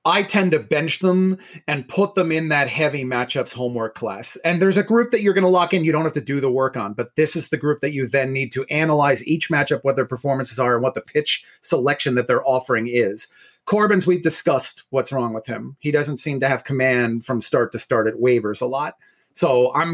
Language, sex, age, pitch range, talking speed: English, male, 30-49, 135-180 Hz, 245 wpm